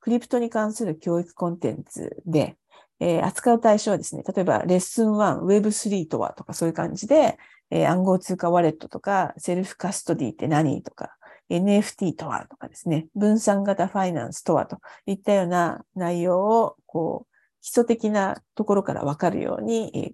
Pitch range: 165-210 Hz